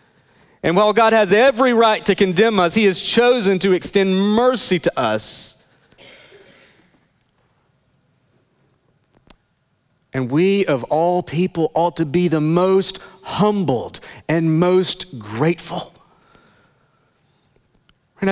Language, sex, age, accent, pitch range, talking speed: English, male, 40-59, American, 145-210 Hz, 105 wpm